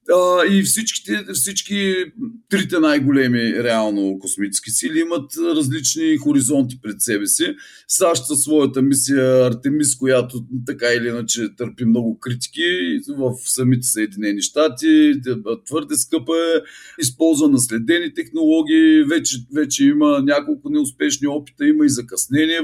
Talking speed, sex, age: 120 wpm, male, 40-59